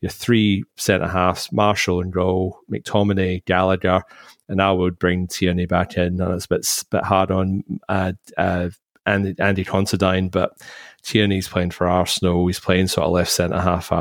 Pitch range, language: 90-95 Hz, English